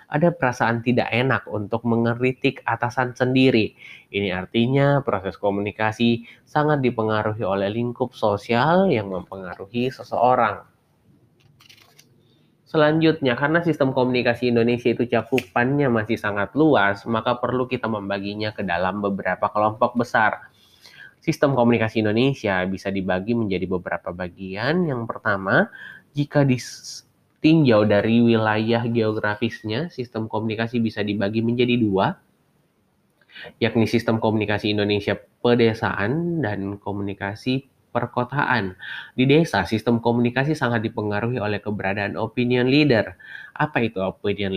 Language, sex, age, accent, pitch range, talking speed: Indonesian, male, 20-39, native, 105-130 Hz, 110 wpm